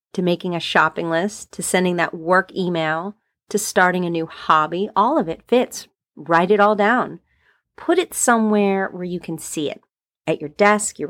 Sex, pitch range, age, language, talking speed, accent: female, 165-220 Hz, 30-49, English, 190 wpm, American